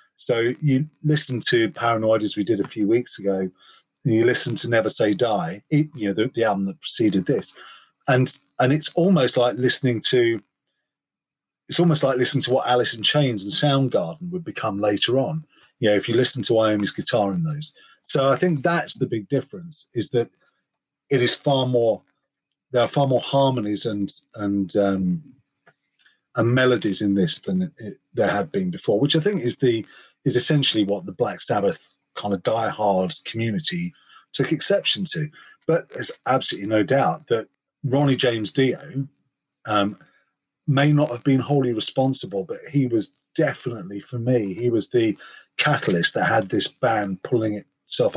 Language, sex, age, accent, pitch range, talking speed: English, male, 30-49, British, 115-150 Hz, 175 wpm